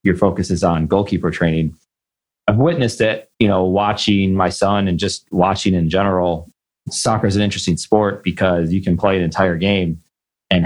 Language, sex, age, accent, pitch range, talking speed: English, male, 30-49, American, 90-105 Hz, 180 wpm